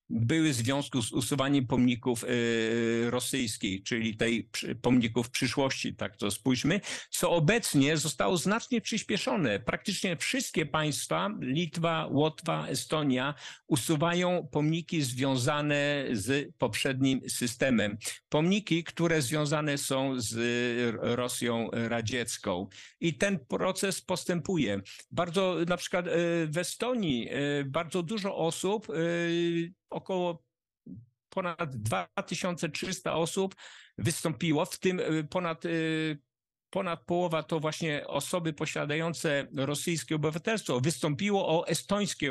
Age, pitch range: 50-69, 125-170 Hz